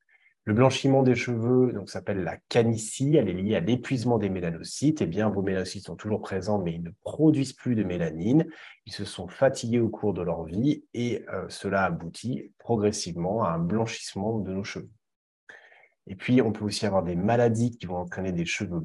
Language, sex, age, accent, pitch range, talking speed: French, male, 30-49, French, 95-115 Hz, 195 wpm